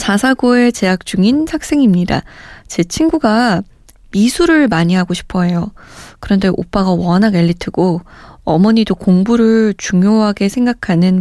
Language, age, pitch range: Korean, 20-39, 180-235 Hz